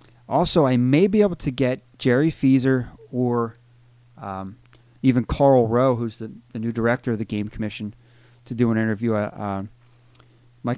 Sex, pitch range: male, 105-120 Hz